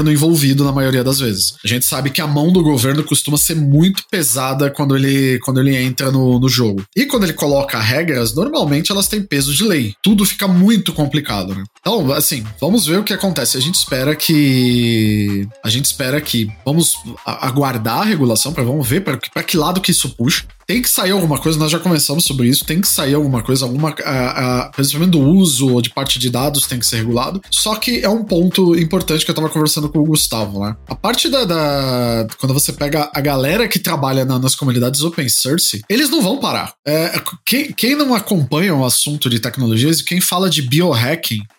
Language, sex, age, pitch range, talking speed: Portuguese, male, 20-39, 130-175 Hz, 215 wpm